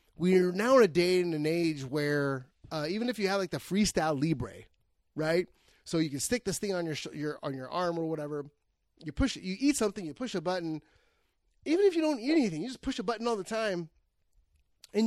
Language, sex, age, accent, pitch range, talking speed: English, male, 30-49, American, 150-220 Hz, 235 wpm